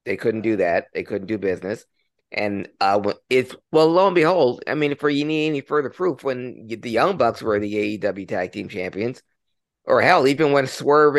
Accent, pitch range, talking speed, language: American, 110-145 Hz, 205 wpm, English